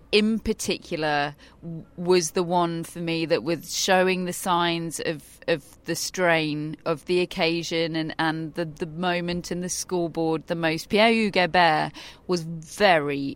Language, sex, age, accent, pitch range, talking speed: English, female, 30-49, British, 165-195 Hz, 150 wpm